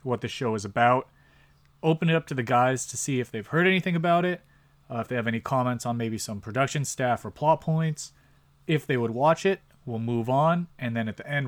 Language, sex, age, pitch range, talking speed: English, male, 30-49, 115-145 Hz, 240 wpm